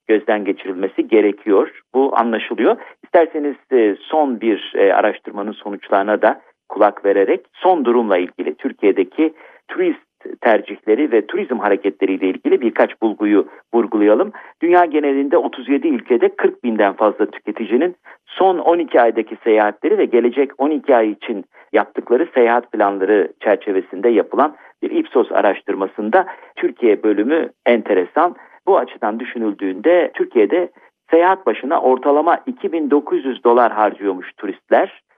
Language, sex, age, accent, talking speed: Turkish, male, 50-69, native, 115 wpm